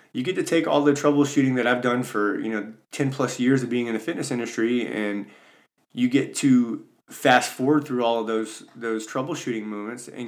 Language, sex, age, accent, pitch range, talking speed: English, male, 20-39, American, 115-140 Hz, 210 wpm